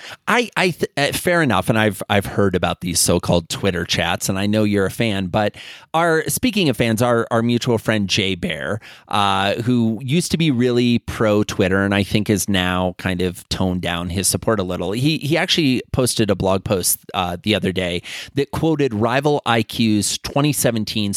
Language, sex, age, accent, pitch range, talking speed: English, male, 30-49, American, 105-160 Hz, 195 wpm